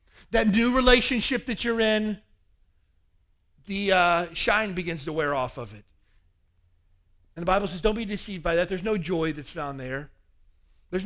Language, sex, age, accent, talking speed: English, male, 40-59, American, 170 wpm